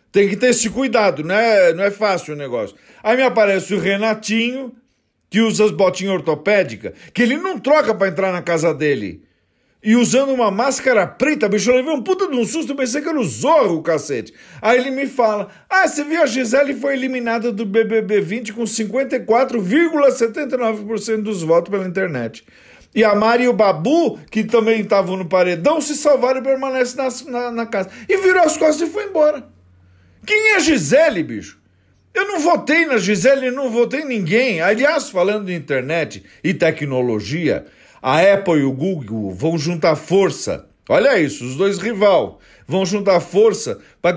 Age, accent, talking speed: 50-69, Brazilian, 180 wpm